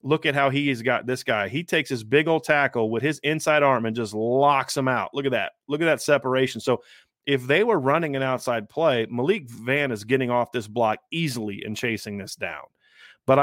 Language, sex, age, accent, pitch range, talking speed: English, male, 30-49, American, 120-150 Hz, 230 wpm